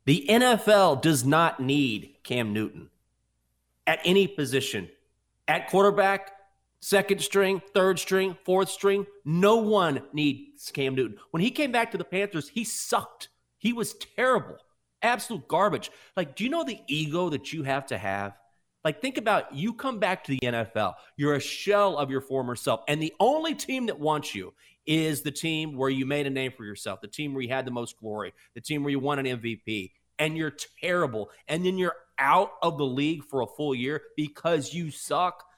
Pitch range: 130-190 Hz